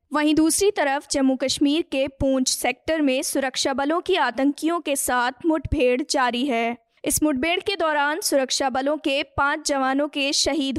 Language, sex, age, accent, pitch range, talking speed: Hindi, female, 20-39, native, 255-300 Hz, 160 wpm